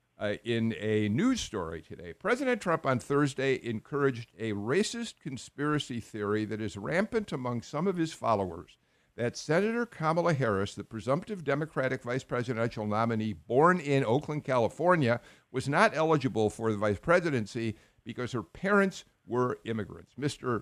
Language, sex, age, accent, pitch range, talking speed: English, male, 50-69, American, 110-145 Hz, 145 wpm